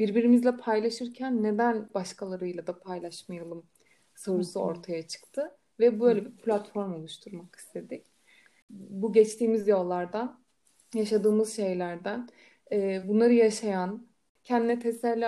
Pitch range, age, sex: 195-230 Hz, 30-49, female